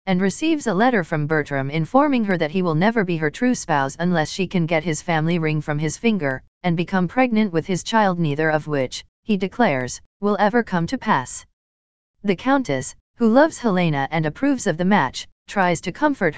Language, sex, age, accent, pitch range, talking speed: English, female, 40-59, American, 150-215 Hz, 200 wpm